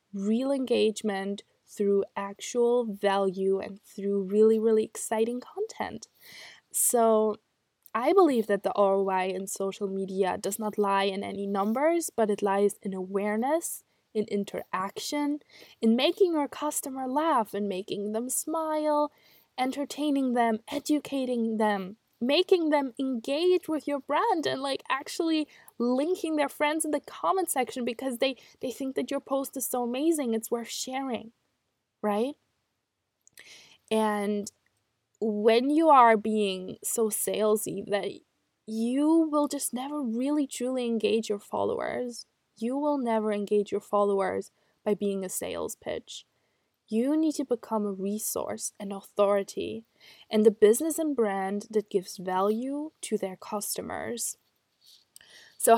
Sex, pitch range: female, 200-275 Hz